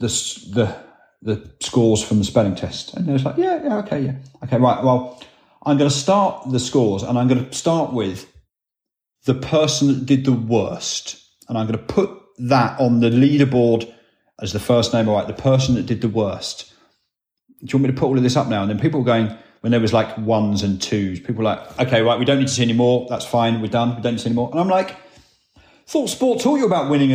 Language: English